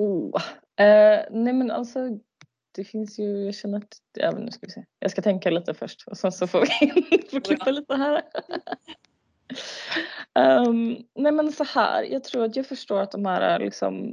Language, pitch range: Swedish, 200-230 Hz